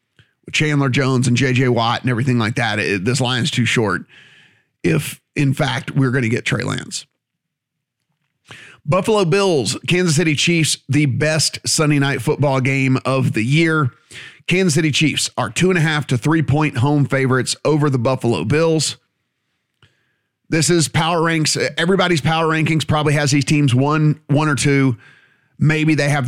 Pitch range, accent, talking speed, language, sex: 125-155 Hz, American, 165 wpm, English, male